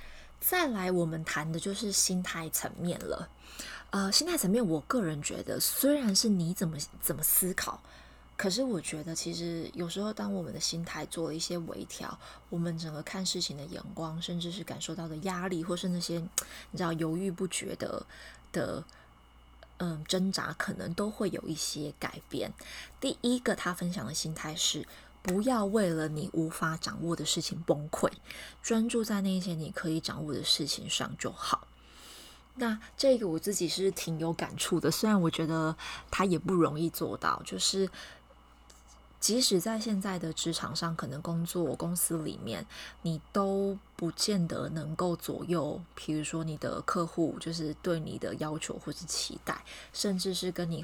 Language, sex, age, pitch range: Chinese, female, 20-39, 160-190 Hz